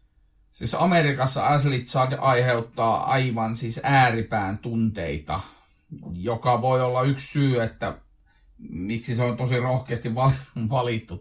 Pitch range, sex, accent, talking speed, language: 115-130 Hz, male, native, 110 wpm, Finnish